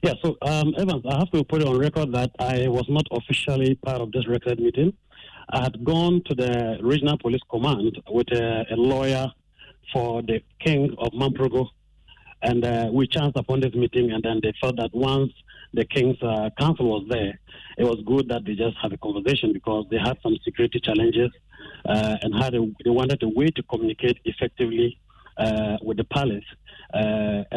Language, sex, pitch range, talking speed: English, male, 115-135 Hz, 185 wpm